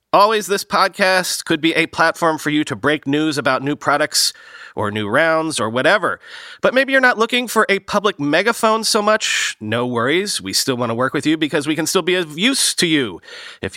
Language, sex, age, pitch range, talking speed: English, male, 30-49, 140-200 Hz, 220 wpm